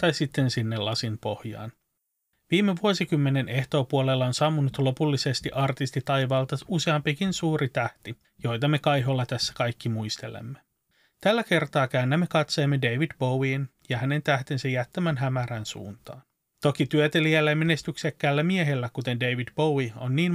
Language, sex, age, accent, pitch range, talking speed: Finnish, male, 30-49, native, 130-160 Hz, 130 wpm